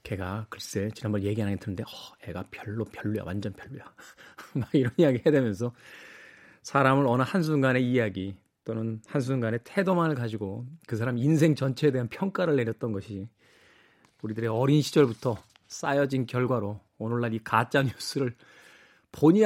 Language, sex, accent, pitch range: Korean, male, native, 115-165 Hz